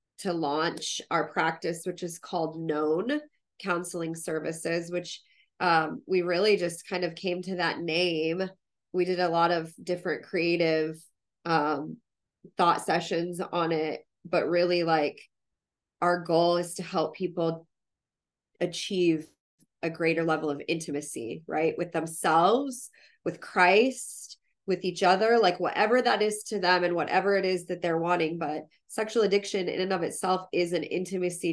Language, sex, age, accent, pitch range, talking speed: English, female, 20-39, American, 165-185 Hz, 150 wpm